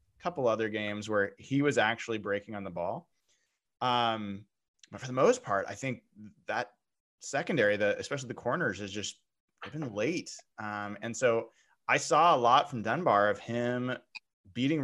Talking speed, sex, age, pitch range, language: 165 wpm, male, 20-39, 105-140 Hz, English